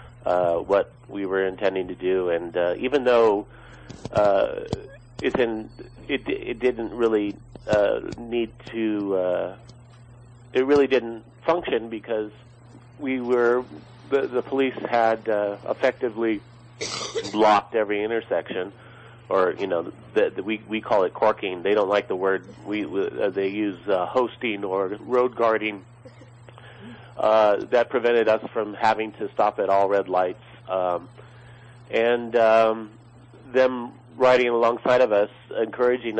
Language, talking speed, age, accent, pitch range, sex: English, 145 wpm, 40-59, American, 100-120 Hz, male